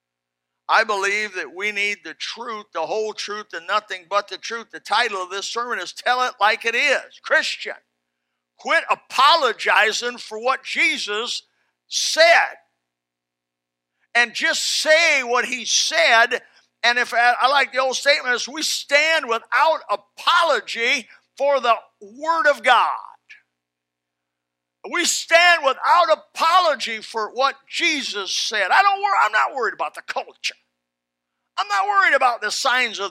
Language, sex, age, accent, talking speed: English, male, 50-69, American, 145 wpm